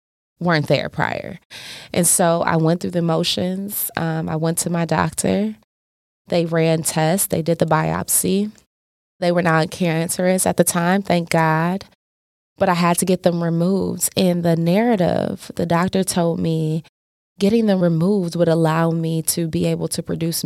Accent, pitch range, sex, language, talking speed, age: American, 160-180 Hz, female, English, 165 wpm, 20-39